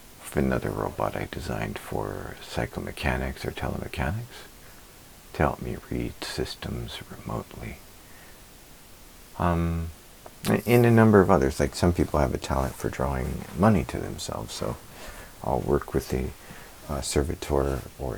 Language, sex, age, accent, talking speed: English, male, 50-69, American, 130 wpm